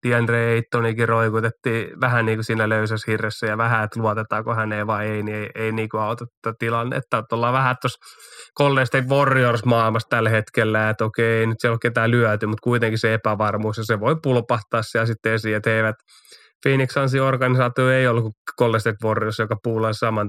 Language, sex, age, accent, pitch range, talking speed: Finnish, male, 20-39, native, 110-125 Hz, 190 wpm